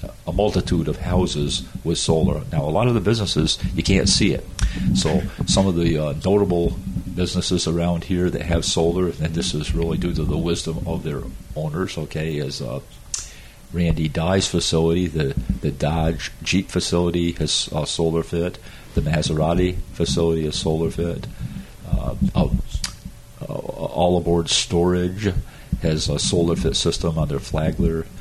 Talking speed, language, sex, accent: 155 wpm, English, male, American